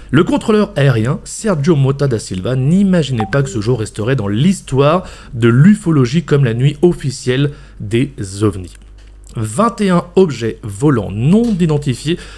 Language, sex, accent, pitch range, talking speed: French, male, French, 120-190 Hz, 135 wpm